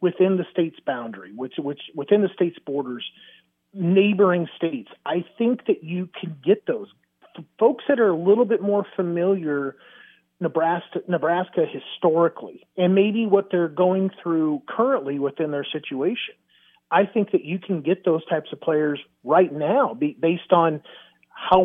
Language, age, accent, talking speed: English, 40-59, American, 150 wpm